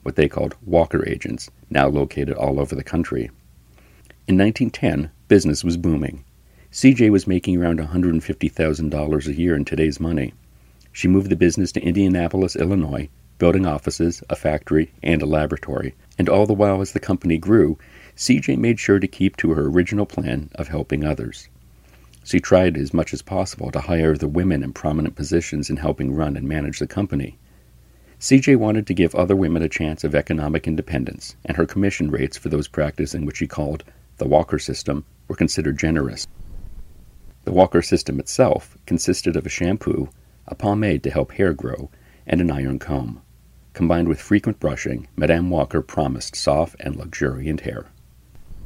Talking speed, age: 170 wpm, 50-69